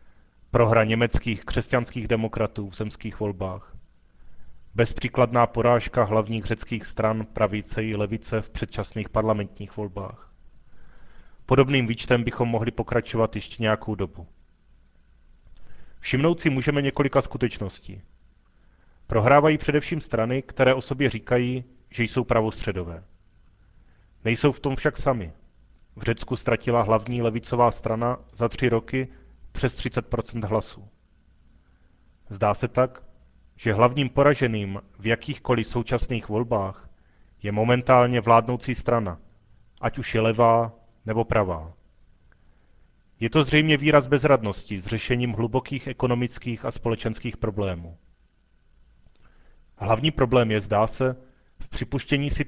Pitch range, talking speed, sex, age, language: 100-125 Hz, 115 wpm, male, 30-49, Czech